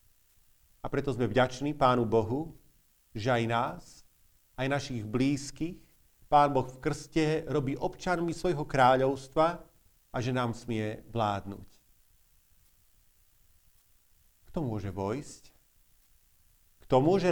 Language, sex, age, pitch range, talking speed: Slovak, male, 50-69, 110-165 Hz, 105 wpm